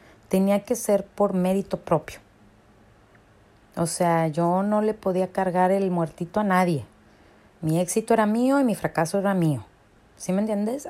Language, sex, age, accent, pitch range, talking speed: Spanish, female, 30-49, Mexican, 150-200 Hz, 160 wpm